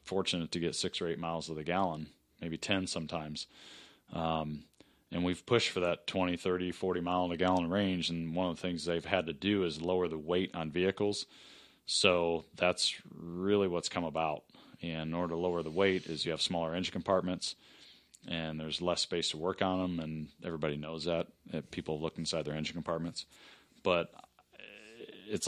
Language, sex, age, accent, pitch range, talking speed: English, male, 30-49, American, 80-95 Hz, 190 wpm